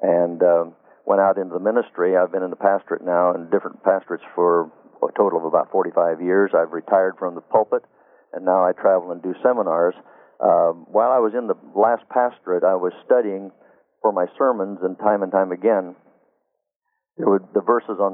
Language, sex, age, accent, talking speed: English, male, 50-69, American, 200 wpm